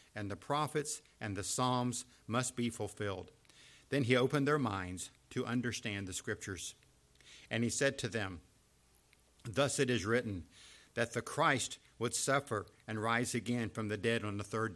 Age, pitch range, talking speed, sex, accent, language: 50-69, 105-135 Hz, 165 wpm, male, American, English